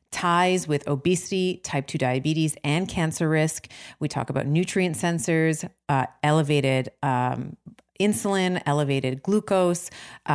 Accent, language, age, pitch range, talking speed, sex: American, English, 30-49, 135-160 Hz, 110 wpm, female